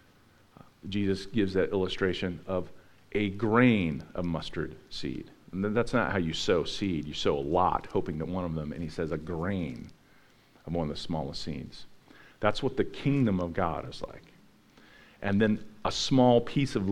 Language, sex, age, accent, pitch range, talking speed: English, male, 40-59, American, 100-135 Hz, 180 wpm